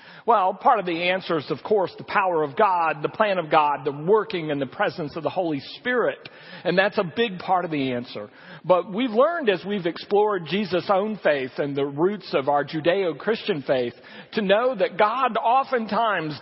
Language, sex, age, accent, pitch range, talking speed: English, male, 50-69, American, 150-215 Hz, 195 wpm